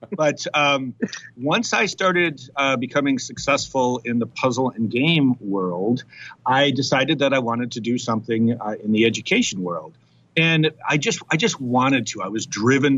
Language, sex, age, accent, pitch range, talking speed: English, male, 50-69, American, 110-145 Hz, 170 wpm